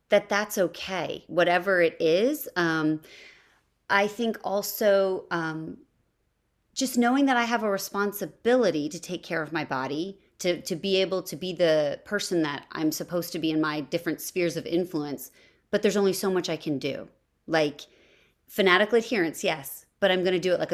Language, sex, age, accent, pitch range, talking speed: English, female, 30-49, American, 160-205 Hz, 175 wpm